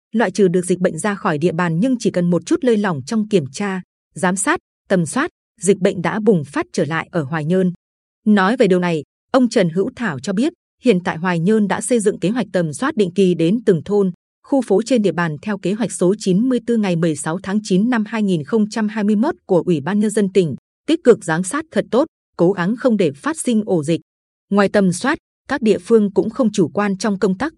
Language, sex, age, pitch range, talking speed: Vietnamese, female, 20-39, 180-230 Hz, 235 wpm